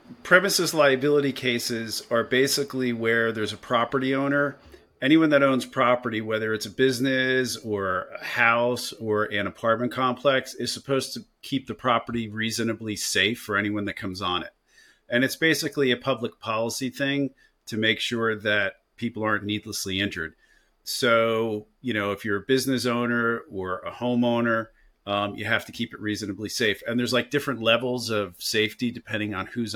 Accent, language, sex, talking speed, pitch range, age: American, English, male, 165 wpm, 105-125 Hz, 40-59